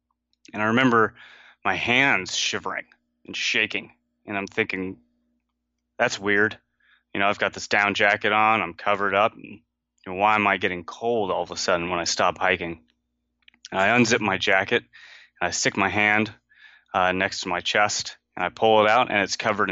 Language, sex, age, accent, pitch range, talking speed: English, male, 20-39, American, 85-105 Hz, 185 wpm